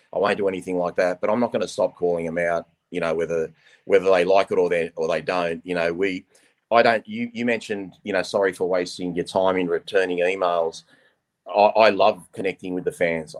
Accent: Australian